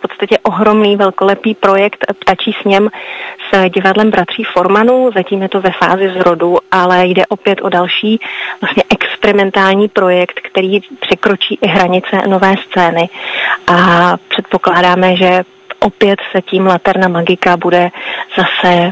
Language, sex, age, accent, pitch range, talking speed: Czech, female, 30-49, native, 185-205 Hz, 135 wpm